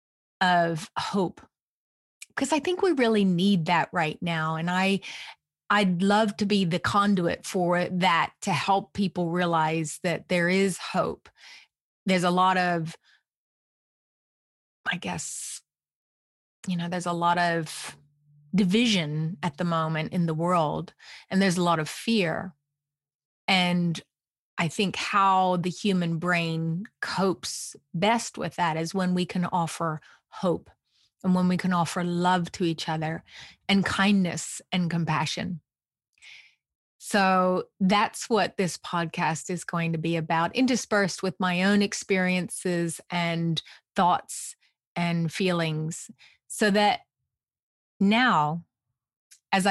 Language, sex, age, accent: English, female, 30-49, American